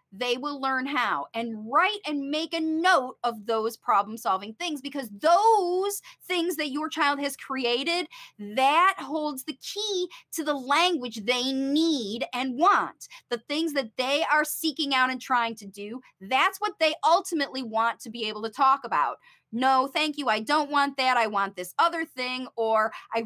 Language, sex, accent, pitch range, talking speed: English, female, American, 245-315 Hz, 180 wpm